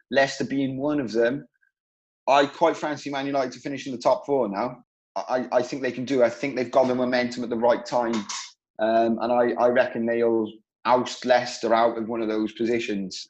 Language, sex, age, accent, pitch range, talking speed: English, male, 20-39, British, 115-145 Hz, 215 wpm